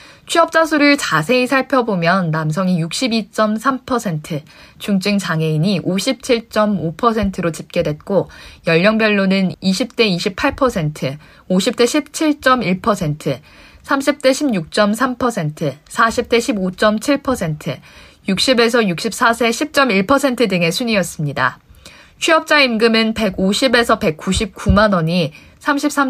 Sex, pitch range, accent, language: female, 170-250 Hz, native, Korean